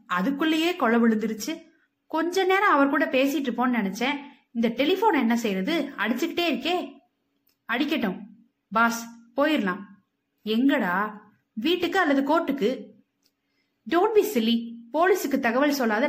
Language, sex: Tamil, female